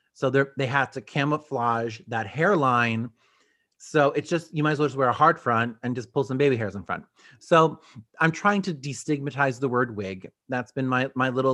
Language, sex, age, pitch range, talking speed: English, male, 30-49, 125-155 Hz, 210 wpm